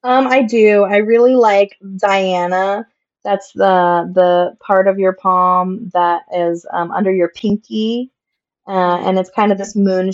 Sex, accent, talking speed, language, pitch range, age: female, American, 160 wpm, English, 180-215 Hz, 20-39